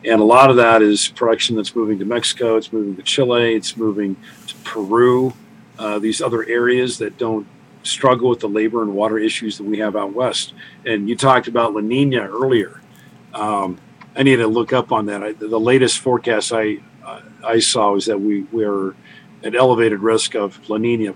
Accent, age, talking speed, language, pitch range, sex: American, 50-69, 200 wpm, English, 105-120 Hz, male